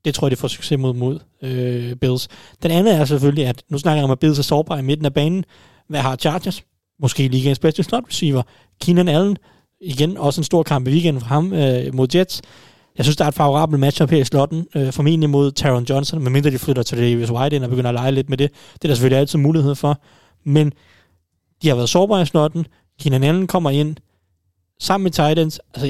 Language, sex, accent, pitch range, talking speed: Danish, male, native, 130-155 Hz, 235 wpm